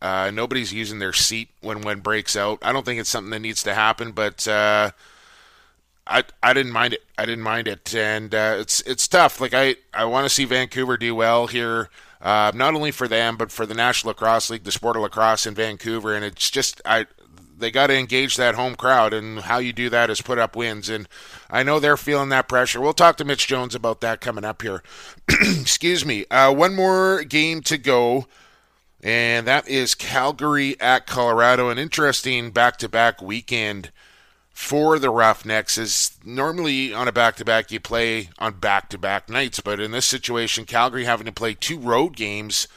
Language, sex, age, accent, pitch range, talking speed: English, male, 20-39, American, 110-130 Hz, 195 wpm